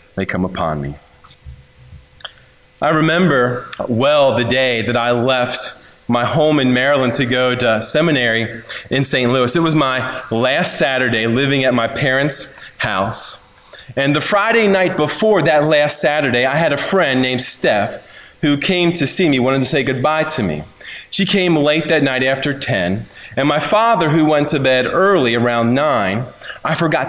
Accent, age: American, 30-49